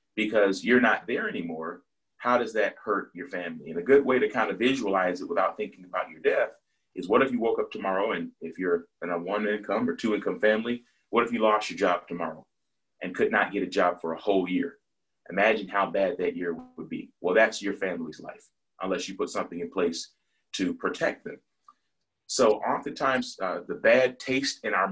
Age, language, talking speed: 30-49, English, 215 wpm